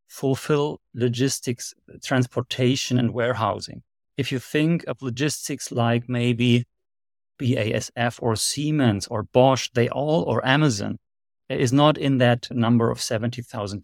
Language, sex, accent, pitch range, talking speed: English, male, German, 115-140 Hz, 120 wpm